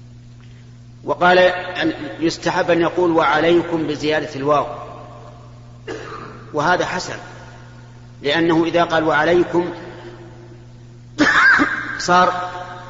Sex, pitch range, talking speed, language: male, 120-165 Hz, 65 wpm, Arabic